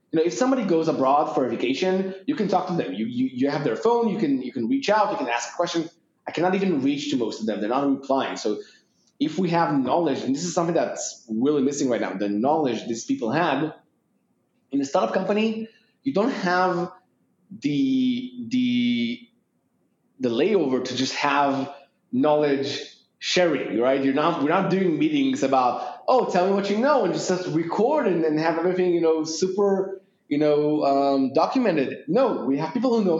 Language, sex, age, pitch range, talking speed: English, male, 20-39, 135-225 Hz, 200 wpm